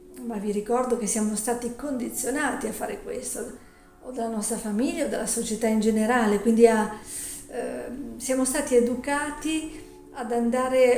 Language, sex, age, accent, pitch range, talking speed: Italian, female, 50-69, native, 220-265 Hz, 140 wpm